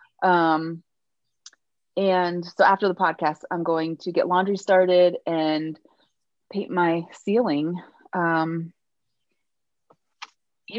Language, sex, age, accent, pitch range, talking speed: English, female, 30-49, American, 165-200 Hz, 100 wpm